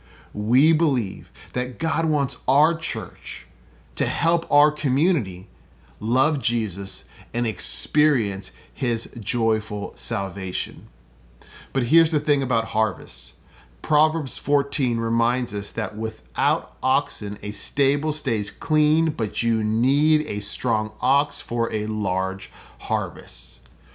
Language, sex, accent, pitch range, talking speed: English, male, American, 105-150 Hz, 115 wpm